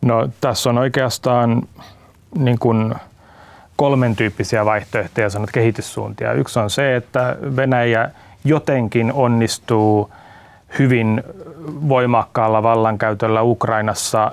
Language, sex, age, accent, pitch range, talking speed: Finnish, male, 30-49, native, 105-120 Hz, 90 wpm